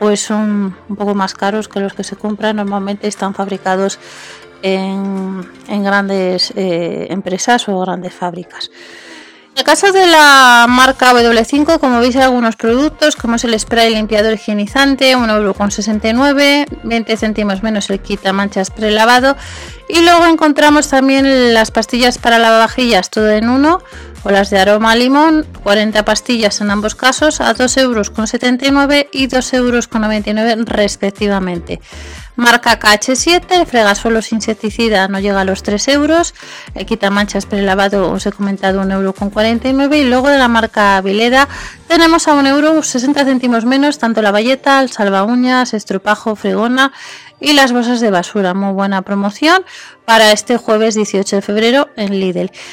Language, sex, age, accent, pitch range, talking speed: Spanish, female, 30-49, Spanish, 205-260 Hz, 150 wpm